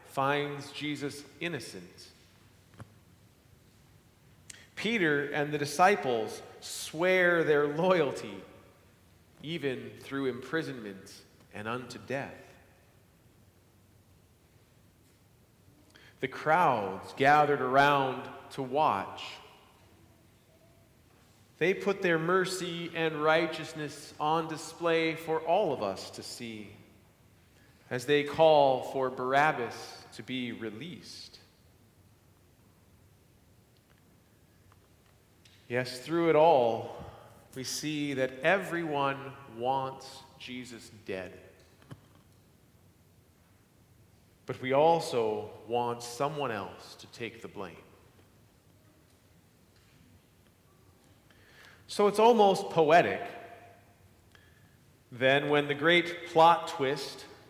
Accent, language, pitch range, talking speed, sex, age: American, English, 100-150 Hz, 80 wpm, male, 40-59